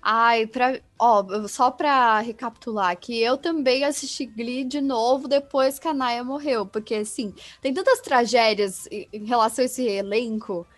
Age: 10-29